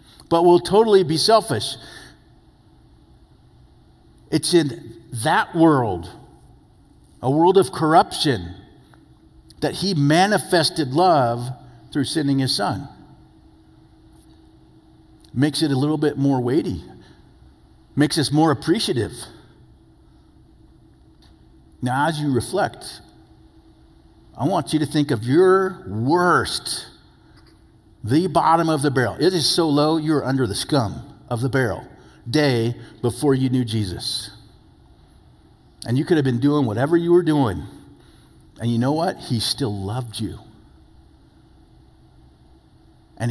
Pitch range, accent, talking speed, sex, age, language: 110-155 Hz, American, 115 wpm, male, 50-69, English